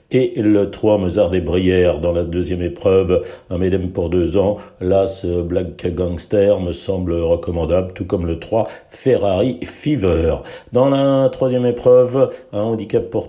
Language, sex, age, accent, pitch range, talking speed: French, male, 60-79, French, 90-105 Hz, 155 wpm